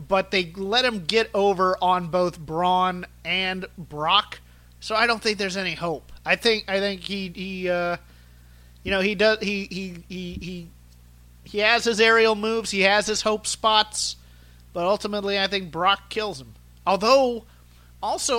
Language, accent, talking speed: English, American, 170 wpm